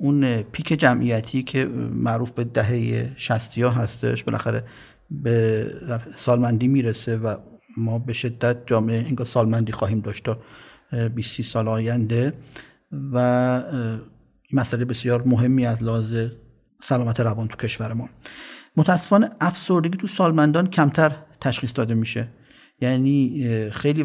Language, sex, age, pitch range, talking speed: English, male, 50-69, 115-140 Hz, 110 wpm